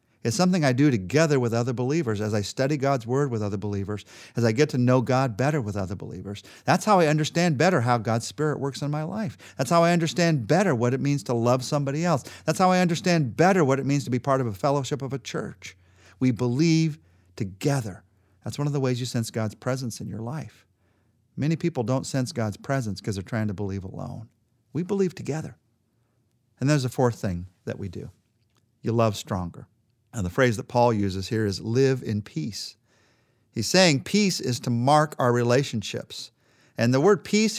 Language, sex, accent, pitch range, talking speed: English, male, American, 115-150 Hz, 210 wpm